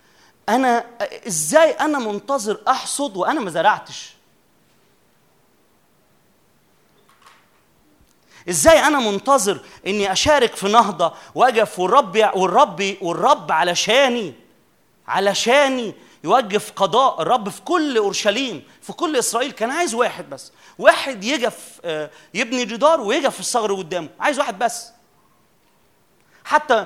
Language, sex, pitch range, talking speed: Arabic, male, 200-275 Hz, 105 wpm